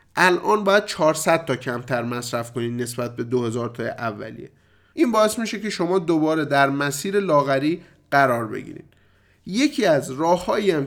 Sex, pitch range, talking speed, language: male, 140-195 Hz, 145 wpm, Persian